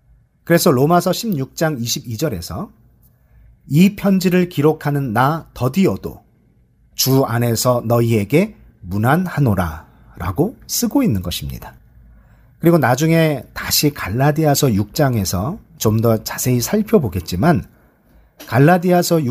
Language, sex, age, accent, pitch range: Korean, male, 40-59, native, 110-175 Hz